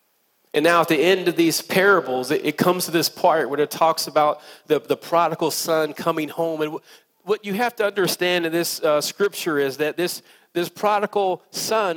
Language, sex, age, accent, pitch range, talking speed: English, male, 40-59, American, 150-195 Hz, 205 wpm